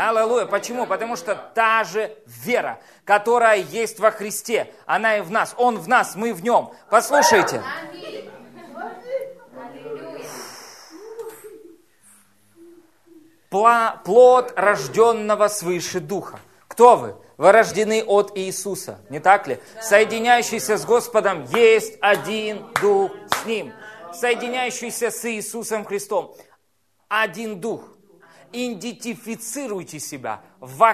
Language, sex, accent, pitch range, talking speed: Russian, male, native, 205-240 Hz, 100 wpm